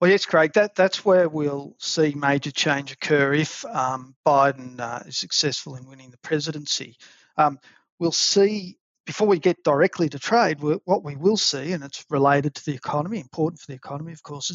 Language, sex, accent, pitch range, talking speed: English, male, Australian, 140-170 Hz, 185 wpm